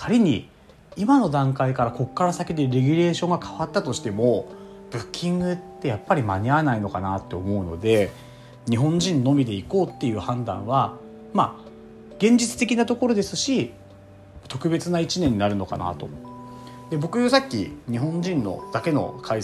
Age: 30-49